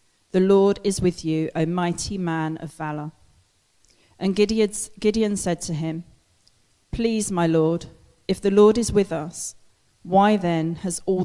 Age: 40-59